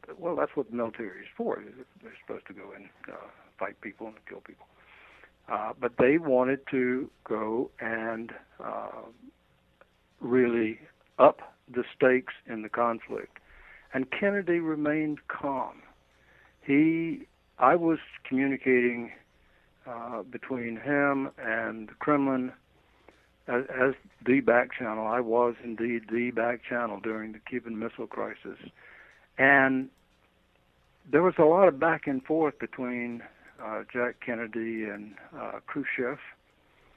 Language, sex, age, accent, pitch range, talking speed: English, male, 60-79, American, 115-135 Hz, 130 wpm